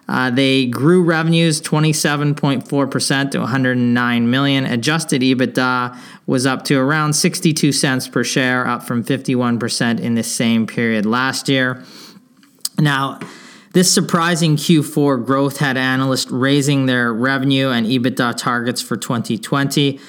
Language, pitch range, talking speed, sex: English, 120-145 Hz, 130 wpm, male